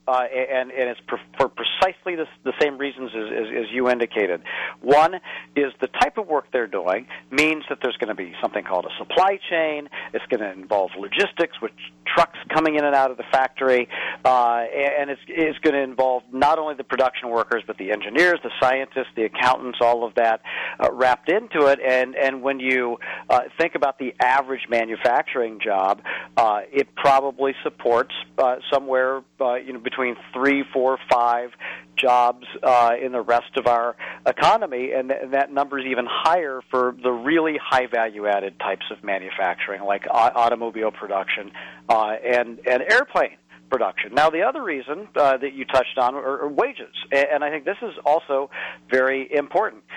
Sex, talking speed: male, 180 wpm